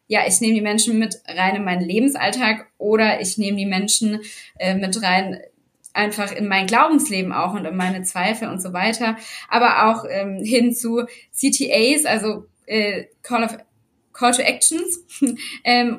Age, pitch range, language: 20-39, 195-245 Hz, German